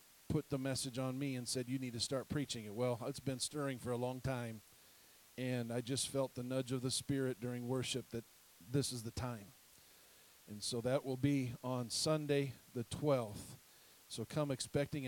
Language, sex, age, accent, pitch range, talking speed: English, male, 40-59, American, 130-195 Hz, 195 wpm